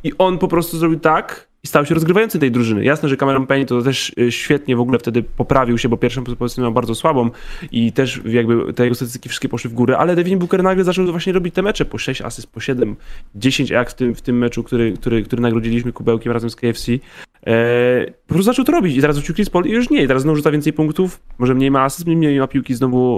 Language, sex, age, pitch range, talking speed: Polish, male, 20-39, 120-150 Hz, 250 wpm